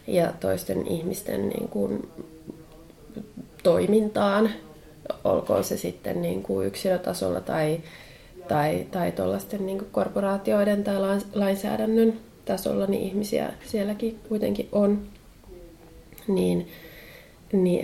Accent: native